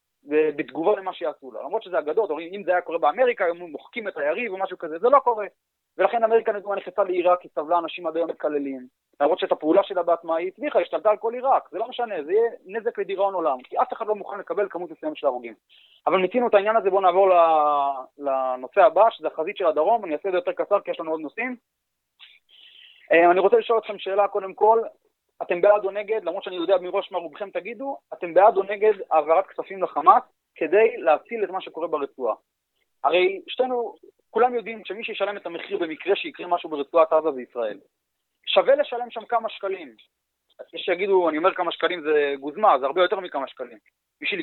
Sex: male